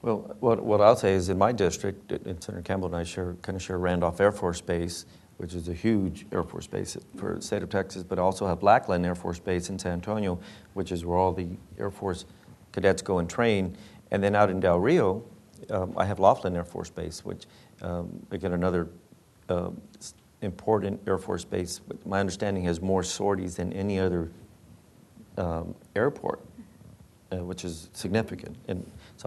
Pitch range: 85-100 Hz